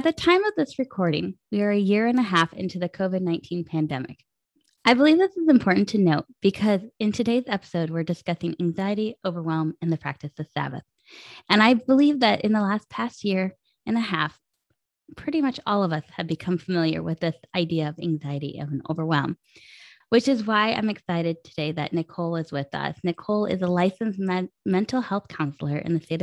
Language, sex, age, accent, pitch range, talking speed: English, female, 10-29, American, 165-210 Hz, 195 wpm